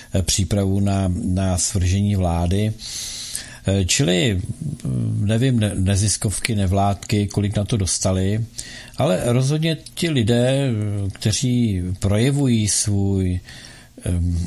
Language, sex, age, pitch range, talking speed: Czech, male, 50-69, 100-125 Hz, 90 wpm